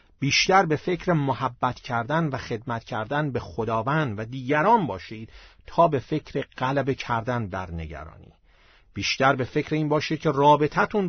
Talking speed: 145 wpm